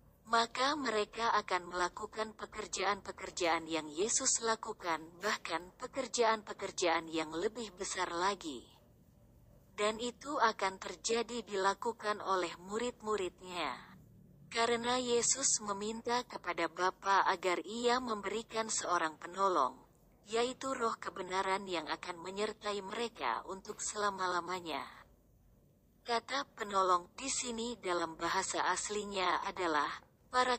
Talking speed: 95 wpm